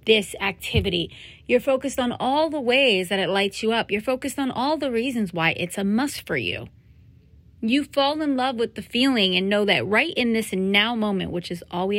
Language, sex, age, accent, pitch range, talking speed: English, female, 30-49, American, 185-245 Hz, 220 wpm